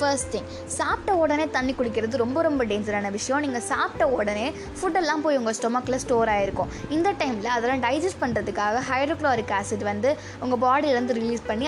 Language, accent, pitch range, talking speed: Tamil, native, 230-300 Hz, 160 wpm